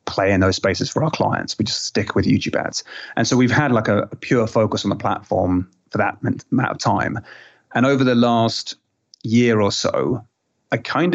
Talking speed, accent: 210 wpm, British